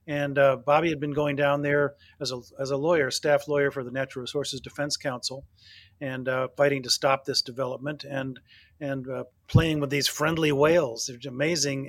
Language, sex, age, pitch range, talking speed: English, male, 40-59, 130-150 Hz, 185 wpm